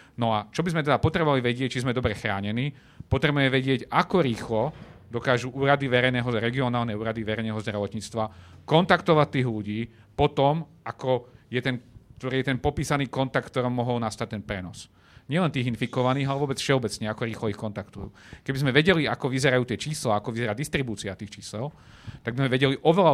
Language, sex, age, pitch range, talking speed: Slovak, male, 40-59, 115-135 Hz, 175 wpm